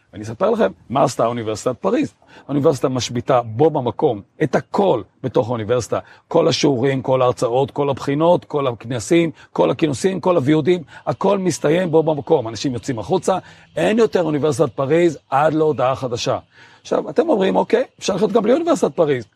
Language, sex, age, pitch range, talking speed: Hebrew, male, 40-59, 125-175 Hz, 155 wpm